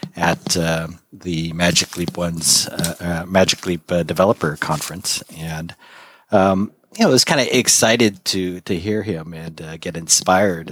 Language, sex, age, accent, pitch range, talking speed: English, male, 40-59, American, 80-100 Hz, 160 wpm